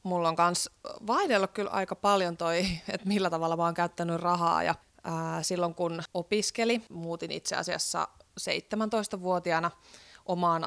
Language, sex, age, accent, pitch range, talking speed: Finnish, female, 20-39, native, 170-190 Hz, 140 wpm